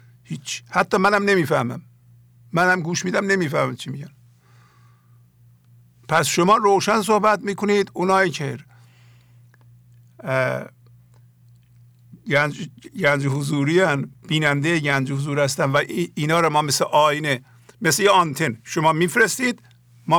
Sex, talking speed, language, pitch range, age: male, 105 wpm, English, 120-170 Hz, 50-69